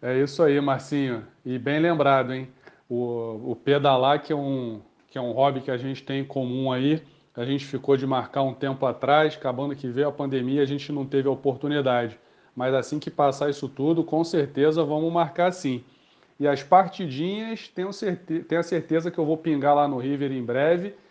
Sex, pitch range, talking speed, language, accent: male, 130-160 Hz, 205 wpm, Portuguese, Brazilian